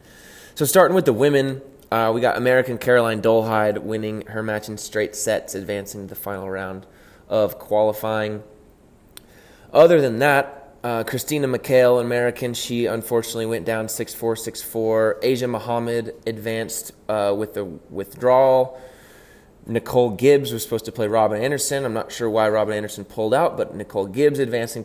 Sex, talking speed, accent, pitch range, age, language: male, 155 wpm, American, 105-125 Hz, 20-39, English